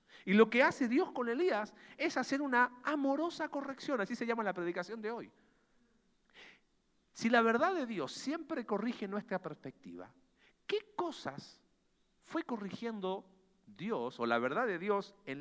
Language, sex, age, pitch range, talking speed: Spanish, male, 50-69, 175-245 Hz, 150 wpm